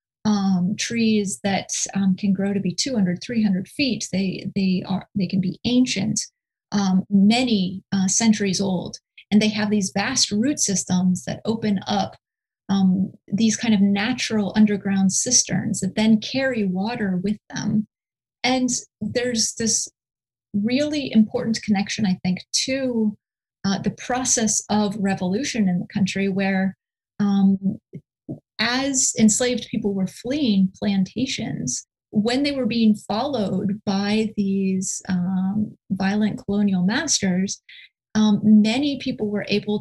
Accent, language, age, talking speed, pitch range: American, English, 30-49, 135 wpm, 190-225 Hz